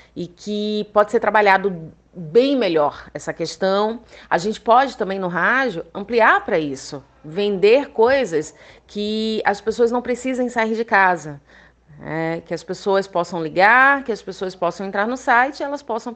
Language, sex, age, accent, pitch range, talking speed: Portuguese, female, 30-49, Brazilian, 180-245 Hz, 165 wpm